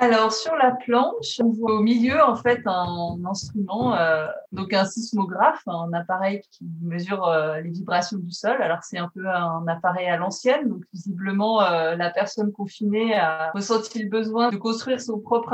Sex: female